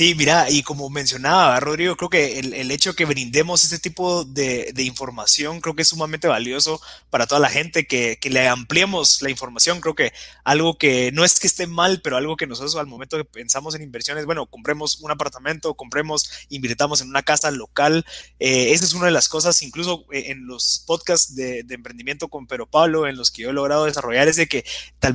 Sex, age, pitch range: male, 20-39, 130-160 Hz